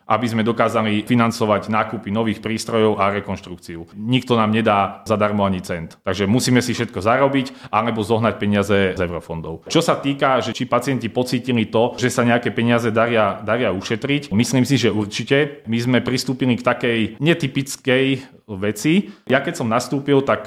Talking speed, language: 165 wpm, Slovak